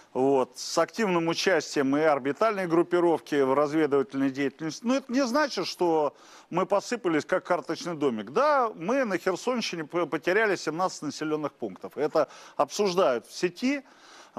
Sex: male